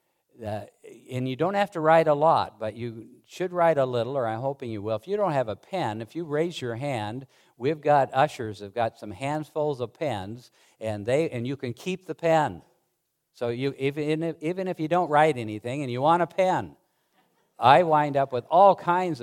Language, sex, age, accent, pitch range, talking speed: English, male, 50-69, American, 110-160 Hz, 210 wpm